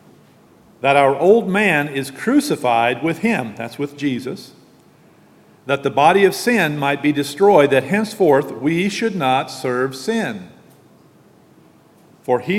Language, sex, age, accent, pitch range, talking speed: English, male, 40-59, American, 120-170 Hz, 135 wpm